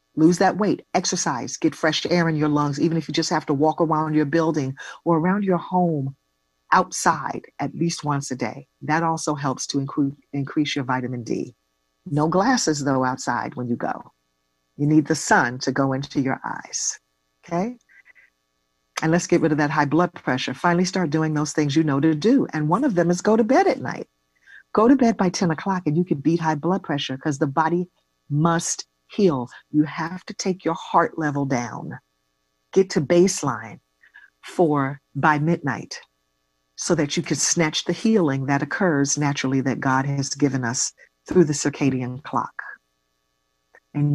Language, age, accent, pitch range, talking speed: English, 40-59, American, 135-175 Hz, 185 wpm